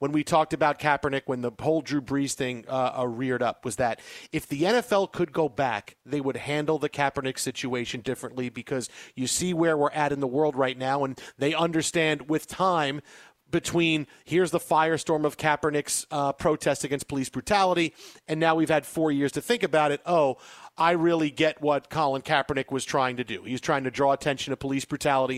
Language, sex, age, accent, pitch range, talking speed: English, male, 40-59, American, 140-170 Hz, 205 wpm